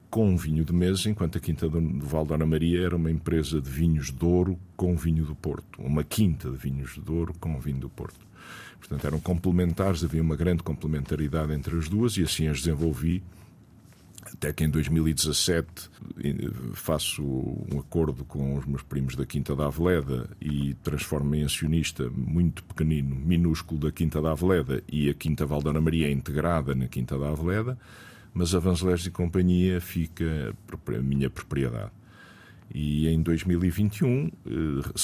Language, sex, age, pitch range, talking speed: Portuguese, male, 50-69, 75-90 Hz, 160 wpm